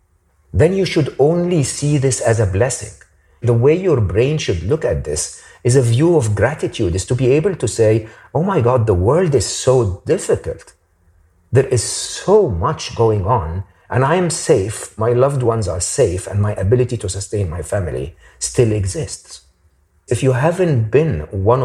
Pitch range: 95-135 Hz